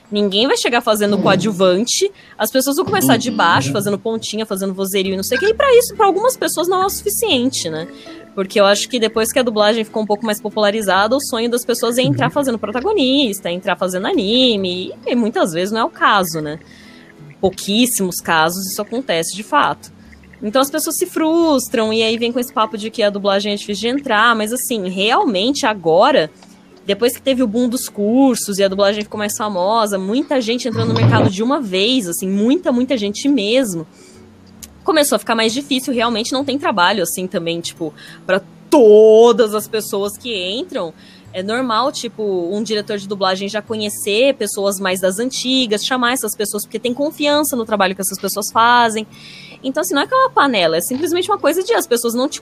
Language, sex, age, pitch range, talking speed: Portuguese, female, 10-29, 200-260 Hz, 200 wpm